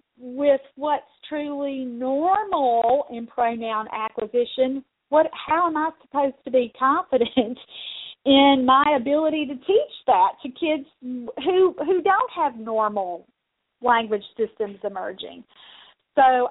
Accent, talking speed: American, 115 wpm